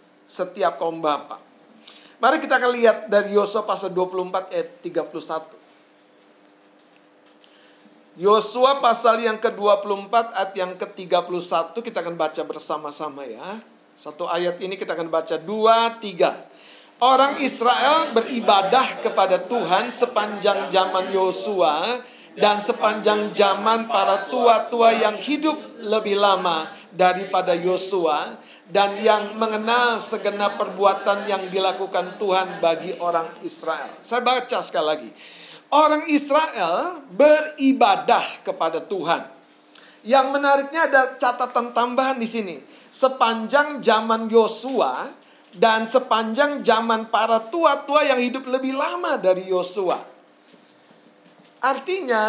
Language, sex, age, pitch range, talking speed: Indonesian, male, 40-59, 185-245 Hz, 110 wpm